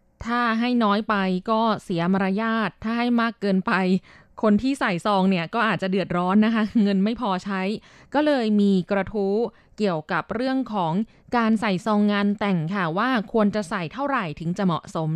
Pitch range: 180-225 Hz